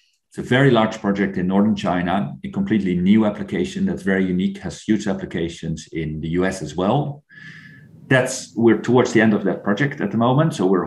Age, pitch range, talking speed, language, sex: 40-59, 95-130 Hz, 200 wpm, English, male